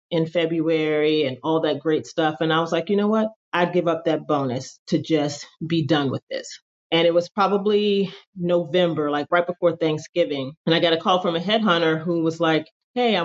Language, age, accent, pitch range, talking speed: English, 30-49, American, 160-200 Hz, 215 wpm